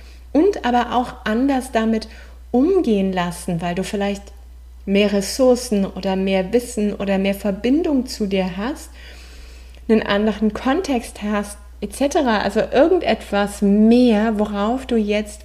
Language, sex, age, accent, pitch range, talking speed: German, female, 30-49, German, 160-220 Hz, 125 wpm